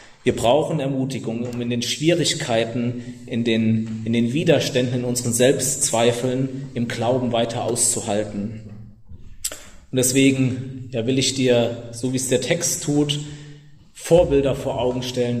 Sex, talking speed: male, 135 wpm